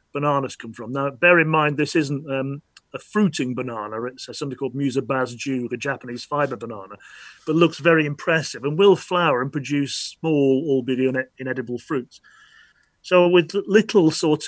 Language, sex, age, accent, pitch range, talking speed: English, male, 40-59, British, 130-165 Hz, 165 wpm